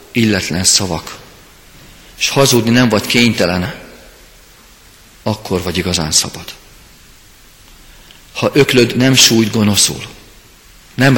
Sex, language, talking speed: male, Hungarian, 90 wpm